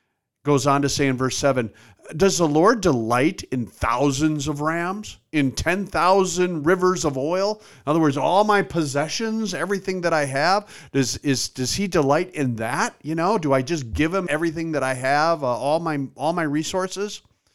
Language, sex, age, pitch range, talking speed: English, male, 50-69, 125-175 Hz, 190 wpm